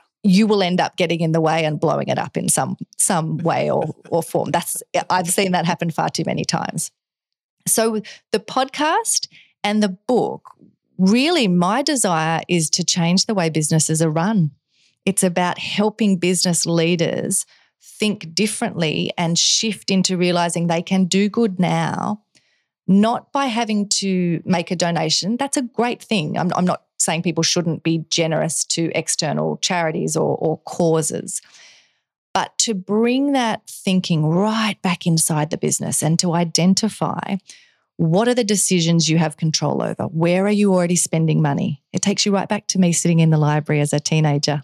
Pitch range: 160-205 Hz